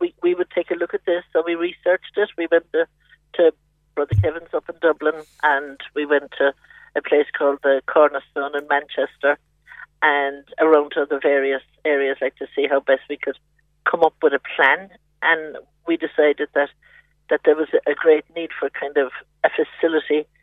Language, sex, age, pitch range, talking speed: English, male, 50-69, 145-170 Hz, 190 wpm